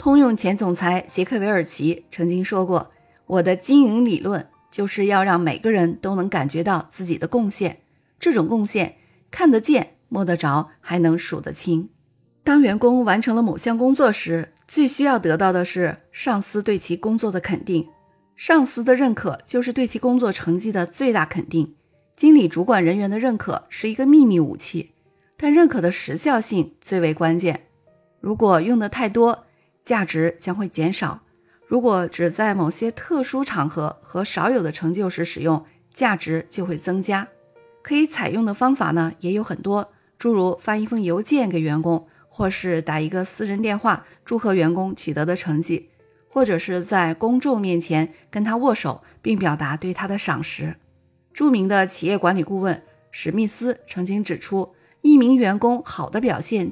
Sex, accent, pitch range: female, native, 170-230 Hz